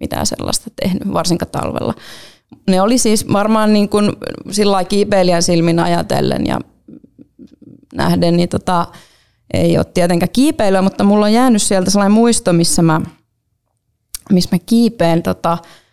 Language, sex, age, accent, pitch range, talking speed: Finnish, female, 20-39, native, 170-210 Hz, 135 wpm